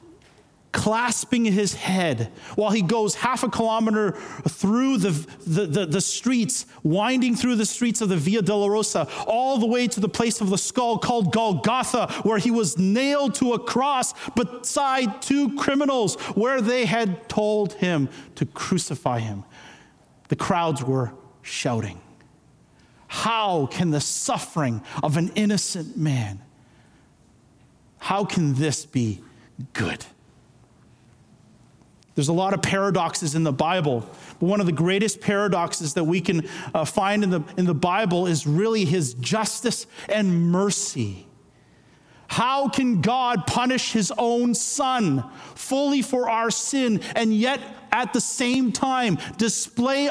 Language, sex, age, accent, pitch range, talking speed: English, male, 40-59, American, 165-240 Hz, 140 wpm